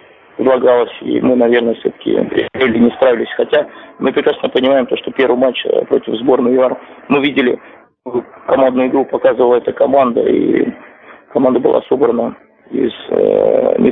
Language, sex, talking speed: Russian, male, 135 wpm